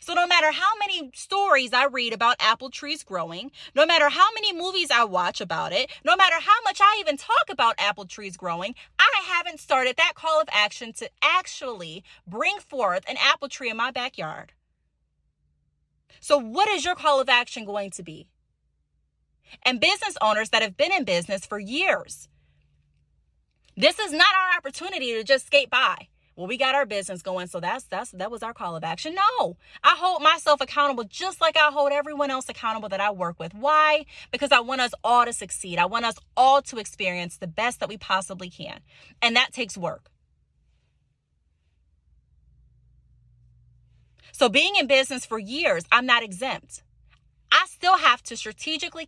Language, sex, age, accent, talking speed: English, female, 20-39, American, 180 wpm